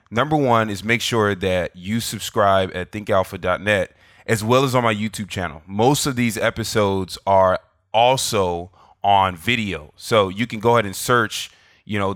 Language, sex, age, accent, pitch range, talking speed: English, male, 20-39, American, 95-120 Hz, 170 wpm